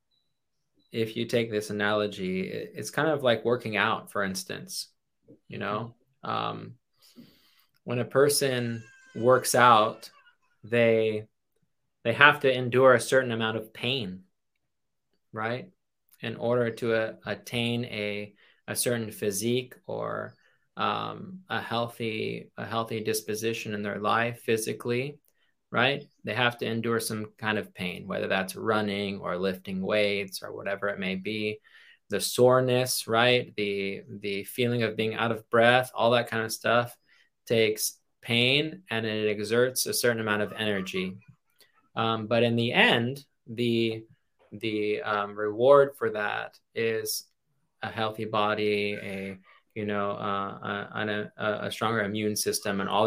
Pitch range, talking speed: 105-120 Hz, 140 wpm